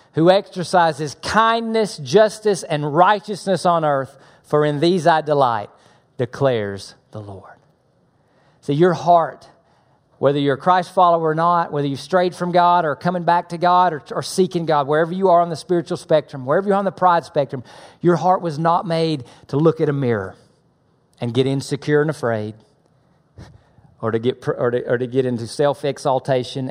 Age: 40-59